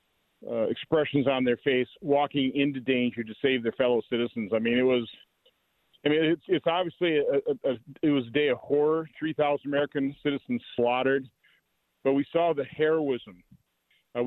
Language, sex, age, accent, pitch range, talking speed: English, male, 40-59, American, 120-145 Hz, 175 wpm